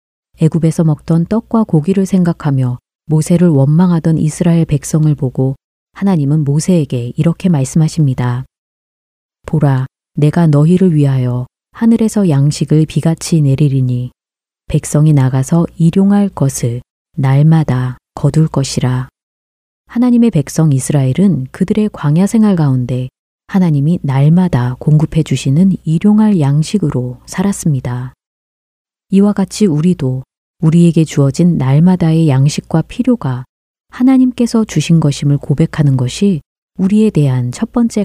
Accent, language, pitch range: native, Korean, 135-180 Hz